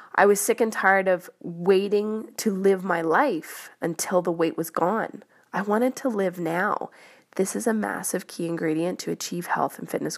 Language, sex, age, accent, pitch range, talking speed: English, female, 20-39, American, 175-235 Hz, 190 wpm